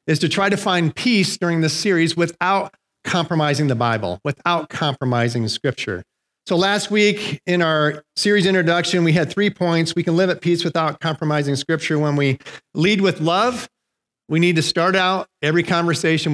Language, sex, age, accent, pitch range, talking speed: English, male, 40-59, American, 145-180 Hz, 175 wpm